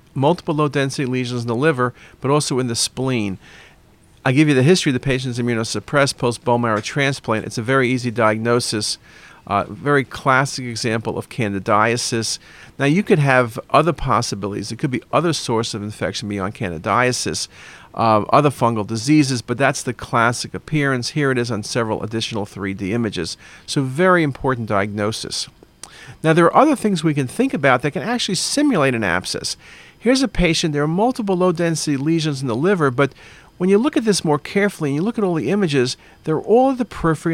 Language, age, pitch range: English, 50-69, 115-160 Hz